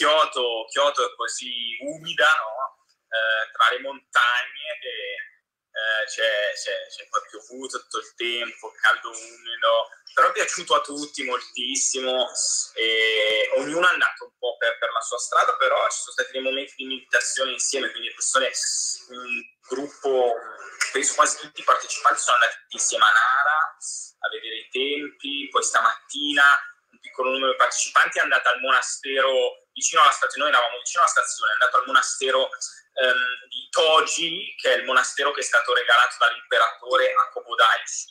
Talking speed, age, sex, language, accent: 155 wpm, 20-39, male, Italian, native